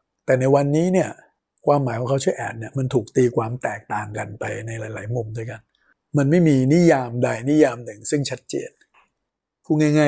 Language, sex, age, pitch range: Thai, male, 60-79, 120-150 Hz